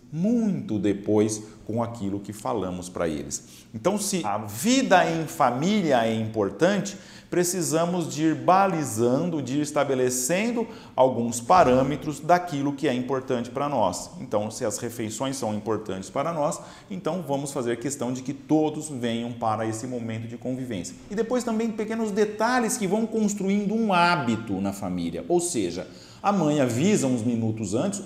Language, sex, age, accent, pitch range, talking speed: Portuguese, male, 40-59, Brazilian, 110-160 Hz, 150 wpm